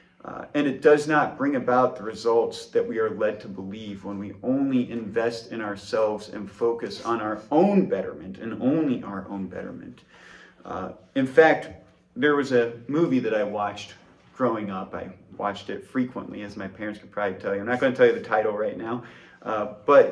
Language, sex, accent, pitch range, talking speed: English, male, American, 110-165 Hz, 200 wpm